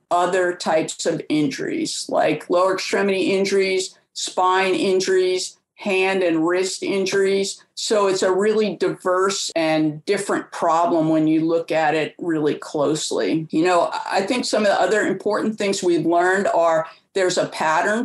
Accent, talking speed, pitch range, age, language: American, 150 wpm, 180-220 Hz, 50-69, English